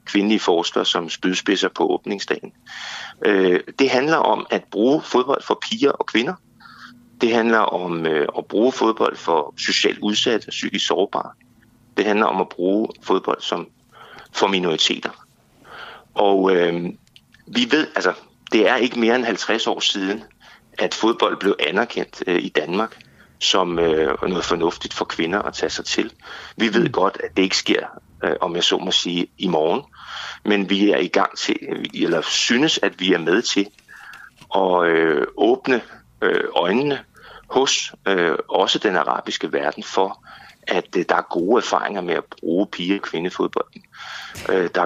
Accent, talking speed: native, 150 wpm